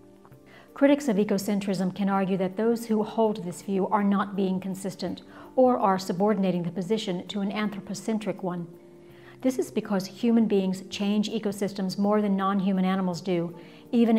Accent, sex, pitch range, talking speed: American, female, 180-215 Hz, 155 wpm